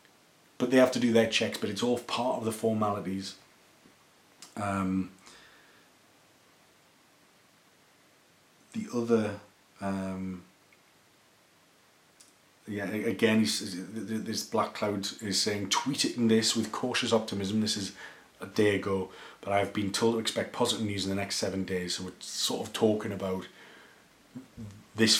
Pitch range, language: 95-115 Hz, English